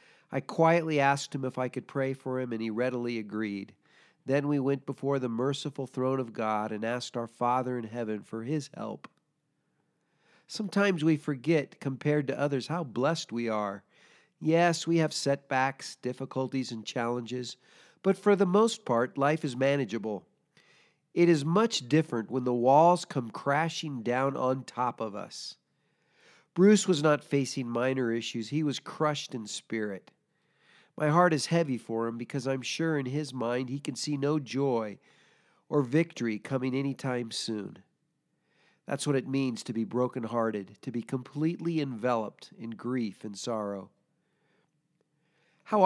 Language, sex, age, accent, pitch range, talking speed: English, male, 40-59, American, 120-155 Hz, 155 wpm